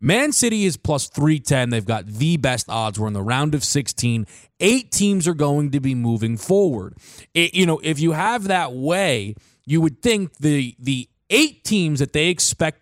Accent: American